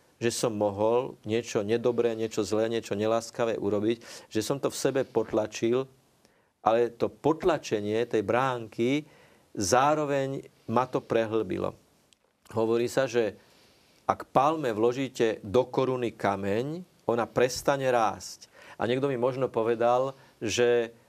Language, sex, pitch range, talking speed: Slovak, male, 110-130 Hz, 120 wpm